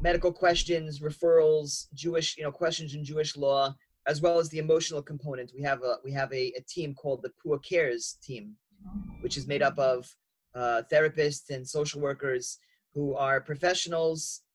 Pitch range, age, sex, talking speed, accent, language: 140-165 Hz, 30-49, male, 175 wpm, American, English